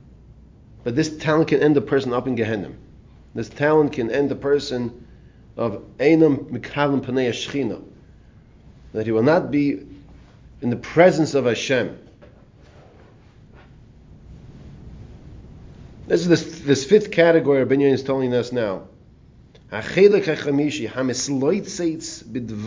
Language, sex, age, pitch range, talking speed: English, male, 40-59, 120-165 Hz, 115 wpm